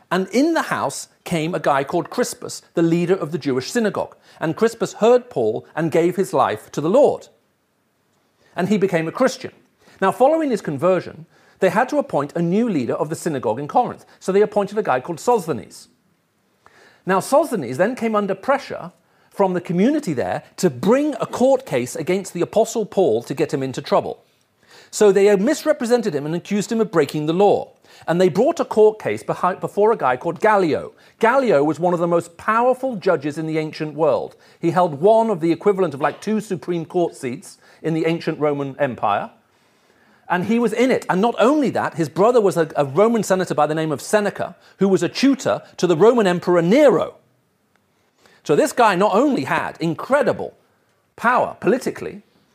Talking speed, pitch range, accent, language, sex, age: 190 wpm, 165-225 Hz, British, English, male, 40-59